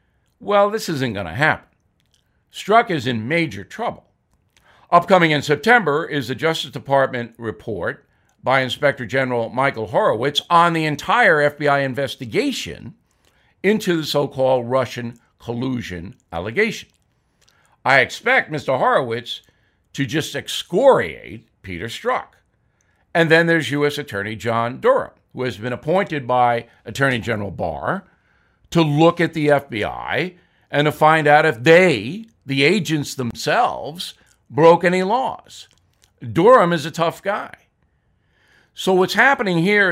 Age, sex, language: 60-79, male, English